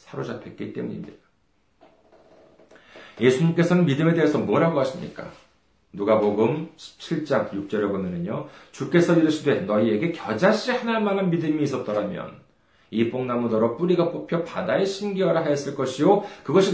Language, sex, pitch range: Korean, male, 120-195 Hz